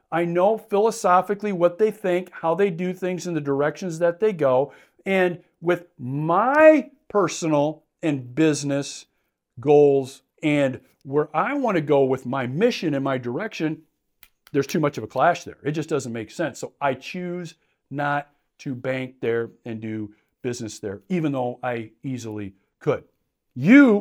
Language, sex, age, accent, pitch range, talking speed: English, male, 50-69, American, 135-185 Hz, 160 wpm